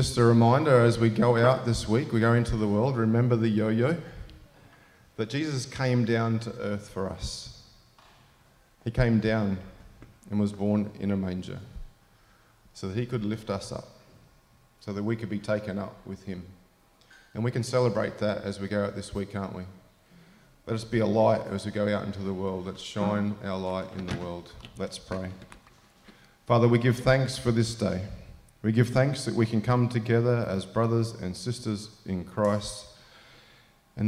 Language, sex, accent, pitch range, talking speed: English, male, Australian, 95-115 Hz, 185 wpm